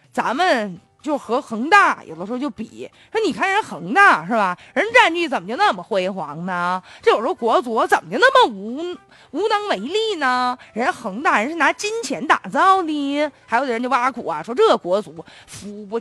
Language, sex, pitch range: Chinese, female, 235-380 Hz